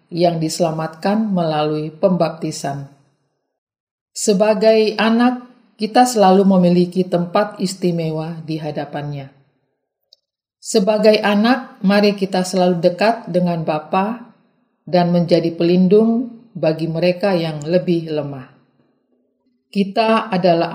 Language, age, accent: Indonesian, 40-59, native